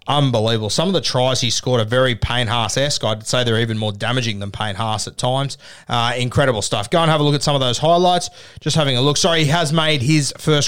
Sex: male